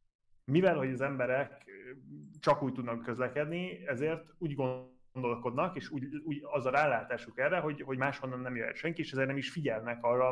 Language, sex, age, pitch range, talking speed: Hungarian, male, 20-39, 120-135 Hz, 175 wpm